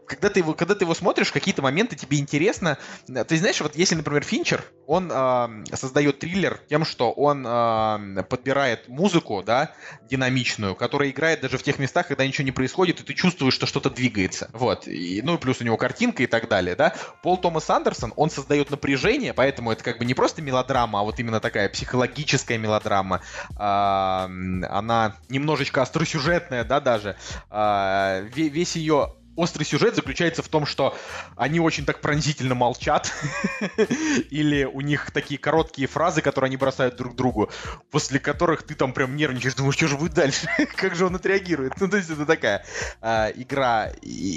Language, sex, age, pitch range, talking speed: Russian, male, 20-39, 120-160 Hz, 225 wpm